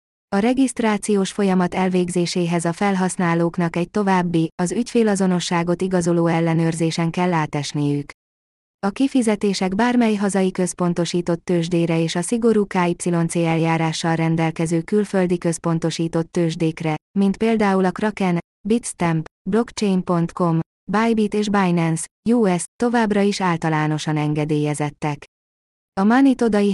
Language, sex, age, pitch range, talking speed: Hungarian, female, 20-39, 165-200 Hz, 100 wpm